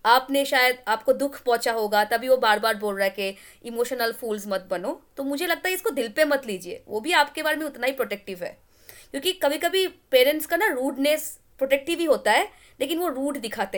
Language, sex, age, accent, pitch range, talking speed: English, female, 20-39, Indian, 235-310 Hz, 215 wpm